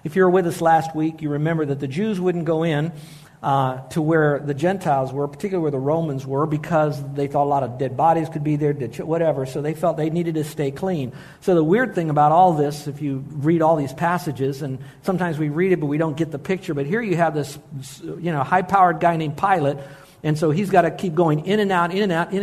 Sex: male